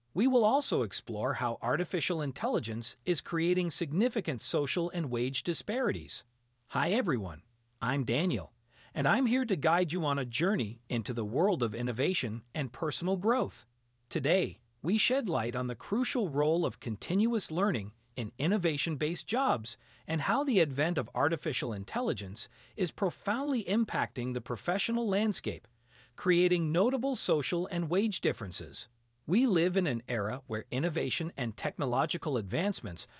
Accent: American